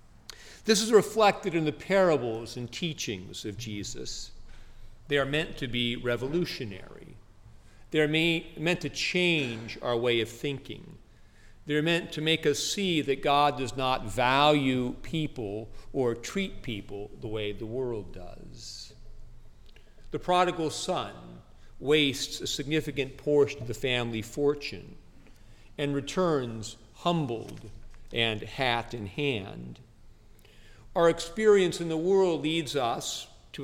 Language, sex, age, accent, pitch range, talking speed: English, male, 50-69, American, 110-145 Hz, 125 wpm